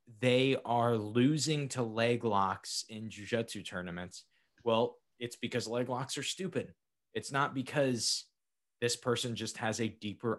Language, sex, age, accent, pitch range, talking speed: English, male, 20-39, American, 105-125 Hz, 145 wpm